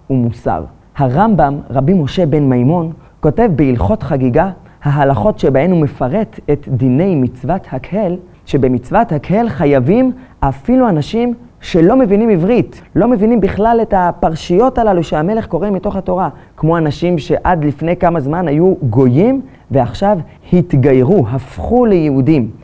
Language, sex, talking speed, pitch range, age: Hebrew, male, 125 wpm, 135-195 Hz, 30-49